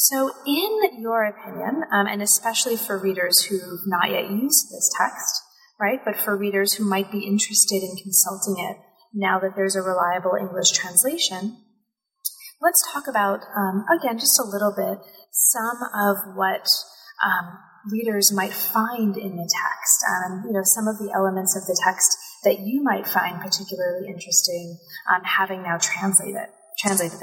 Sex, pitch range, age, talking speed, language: female, 185-220 Hz, 30-49, 165 wpm, English